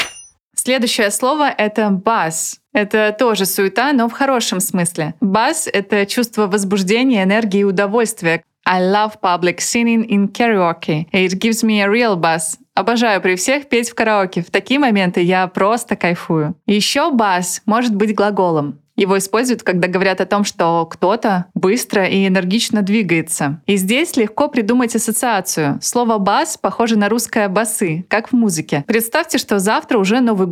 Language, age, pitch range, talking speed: Russian, 20-39, 195-235 Hz, 155 wpm